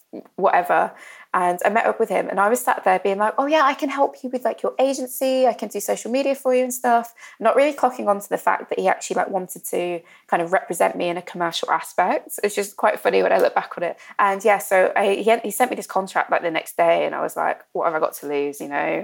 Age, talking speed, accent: 20-39, 280 wpm, British